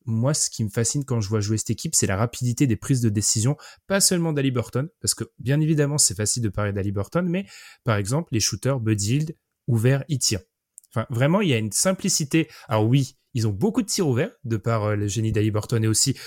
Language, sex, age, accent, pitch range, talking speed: French, male, 20-39, French, 110-140 Hz, 235 wpm